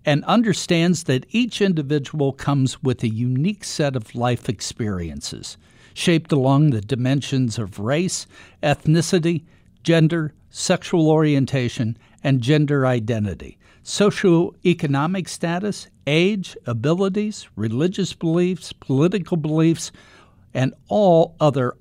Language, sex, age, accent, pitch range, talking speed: English, male, 60-79, American, 120-170 Hz, 100 wpm